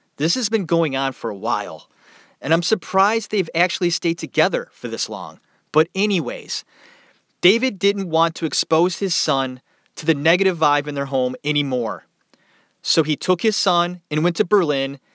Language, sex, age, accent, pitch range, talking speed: English, male, 30-49, American, 150-190 Hz, 175 wpm